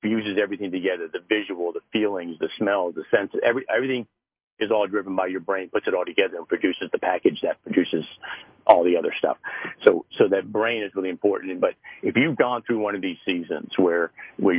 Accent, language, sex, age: American, English, male, 50-69